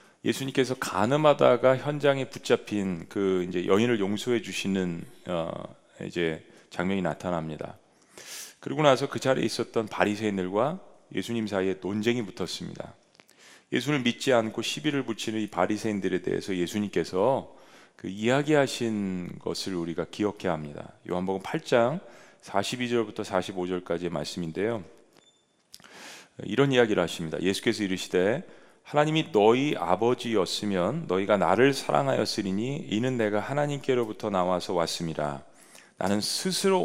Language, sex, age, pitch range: Korean, male, 40-59, 90-125 Hz